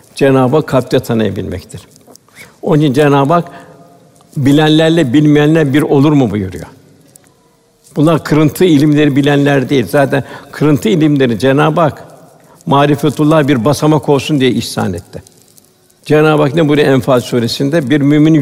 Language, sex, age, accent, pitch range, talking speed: Turkish, male, 60-79, native, 135-155 Hz, 115 wpm